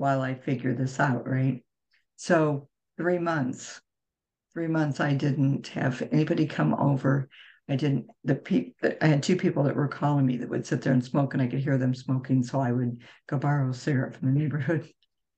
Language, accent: English, American